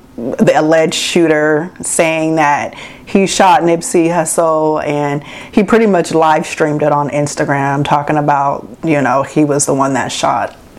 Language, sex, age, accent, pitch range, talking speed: English, female, 30-49, American, 155-180 Hz, 155 wpm